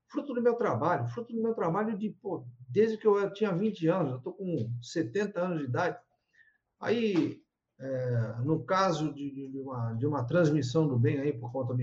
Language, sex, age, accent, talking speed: Portuguese, male, 50-69, Brazilian, 200 wpm